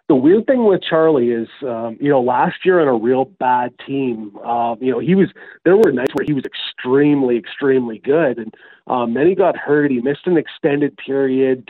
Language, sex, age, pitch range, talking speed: English, male, 30-49, 120-140 Hz, 210 wpm